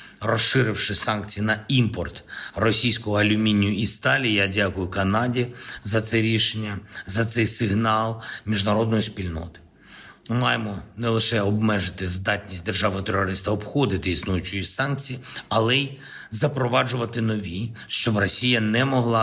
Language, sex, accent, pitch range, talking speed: Ukrainian, male, native, 105-125 Hz, 110 wpm